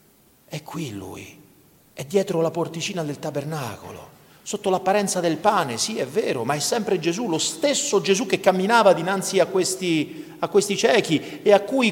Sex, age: male, 40-59